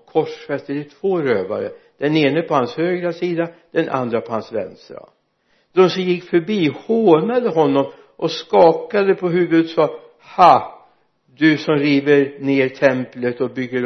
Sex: male